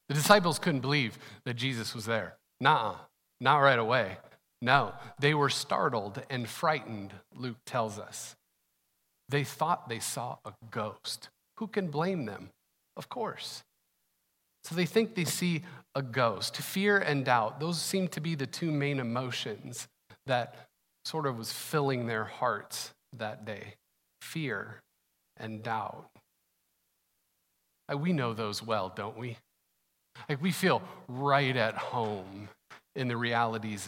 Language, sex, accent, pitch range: English, male, American, 110-145 Hz